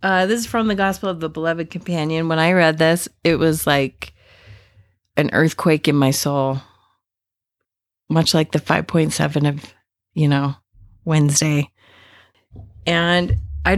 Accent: American